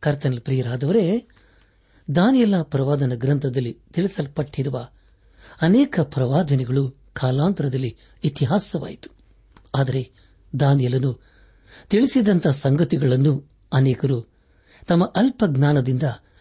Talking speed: 65 wpm